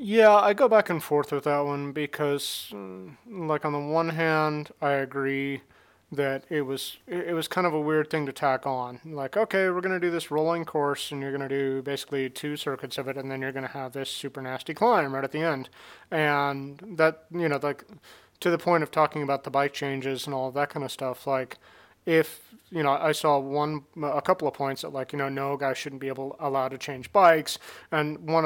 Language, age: English, 30-49